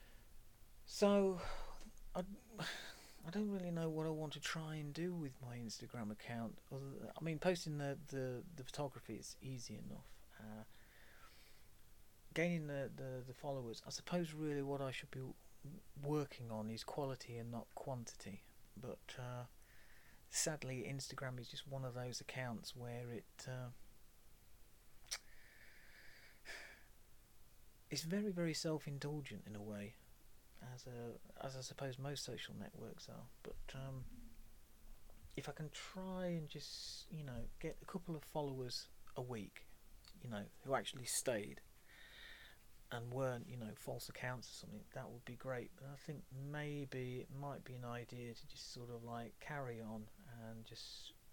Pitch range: 115-145 Hz